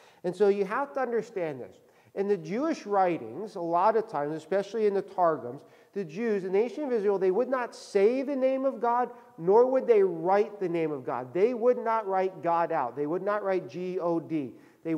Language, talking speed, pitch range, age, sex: English, 210 wpm, 160-220 Hz, 50-69, male